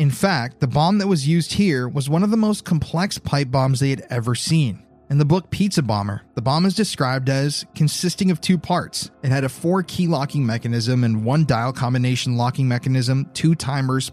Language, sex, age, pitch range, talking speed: English, male, 30-49, 120-155 Hz, 210 wpm